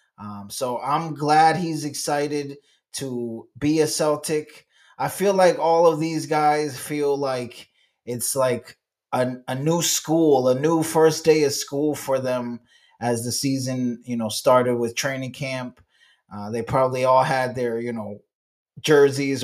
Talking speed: 155 wpm